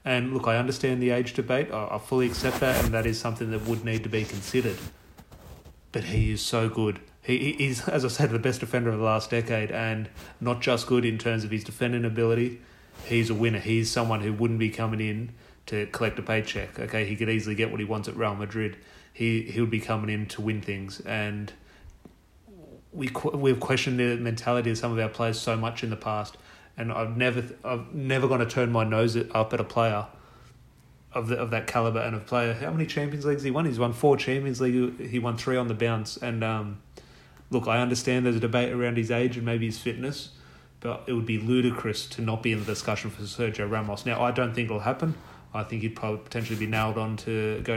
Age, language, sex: 30-49, English, male